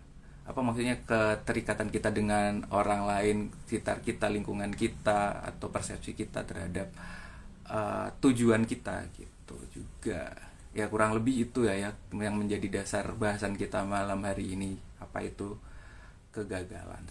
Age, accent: 30-49, native